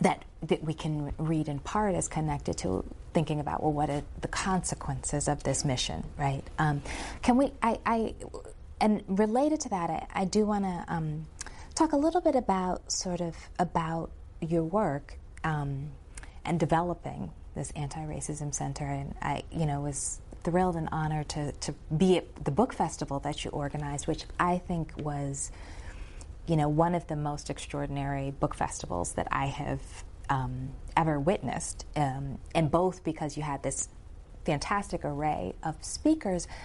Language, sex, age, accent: English, female, 30-49, American